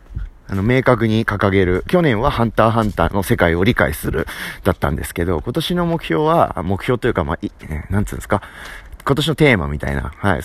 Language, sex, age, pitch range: Japanese, male, 30-49, 85-125 Hz